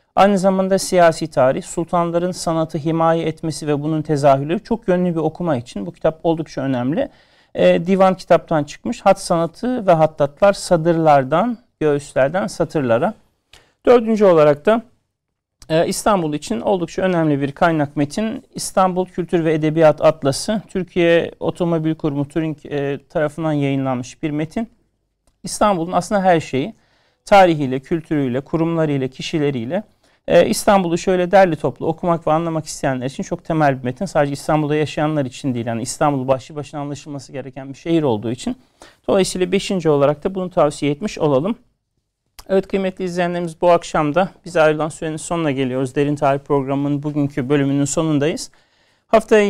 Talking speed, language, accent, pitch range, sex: 145 wpm, Turkish, native, 145-185 Hz, male